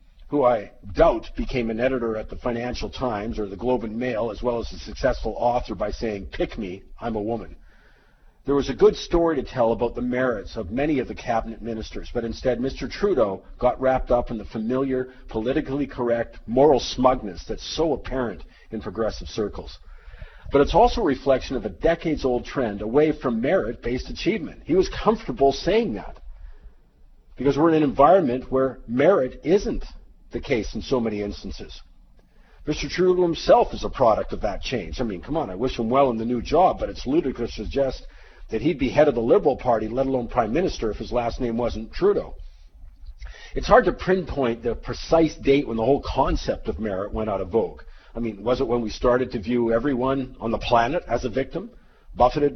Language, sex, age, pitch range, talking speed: English, male, 50-69, 110-135 Hz, 200 wpm